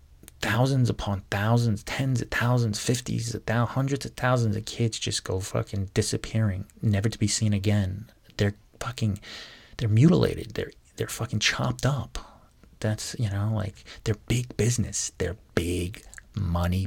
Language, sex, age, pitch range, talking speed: English, male, 30-49, 95-115 Hz, 150 wpm